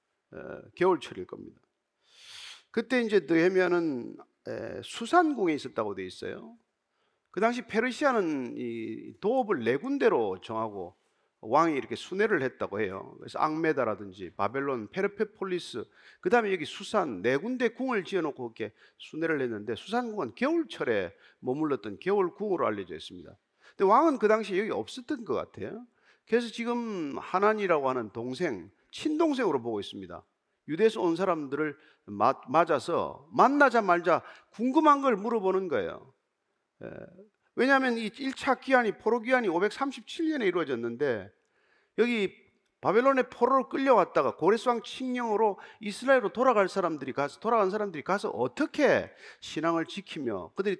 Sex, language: male, Korean